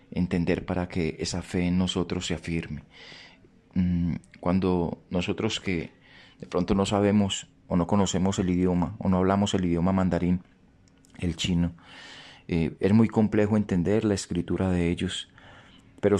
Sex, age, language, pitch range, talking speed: male, 30-49, Spanish, 90-105 Hz, 145 wpm